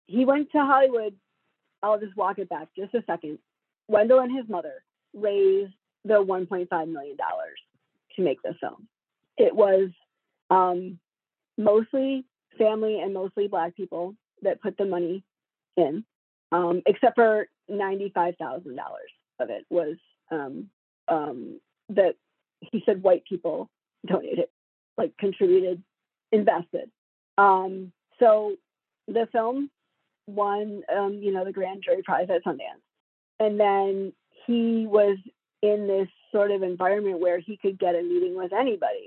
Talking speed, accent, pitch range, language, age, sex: 135 wpm, American, 185-230 Hz, English, 40-59, female